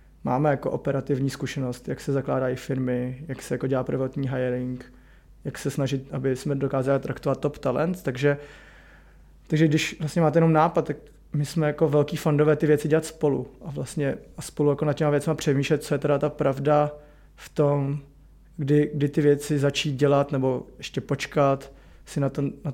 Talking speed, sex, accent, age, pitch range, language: 180 wpm, male, native, 20-39, 140-155 Hz, Czech